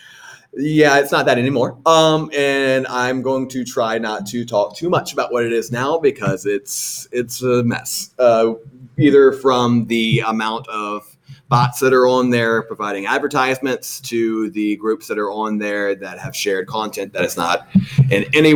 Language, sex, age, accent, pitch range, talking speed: English, male, 30-49, American, 120-155 Hz, 180 wpm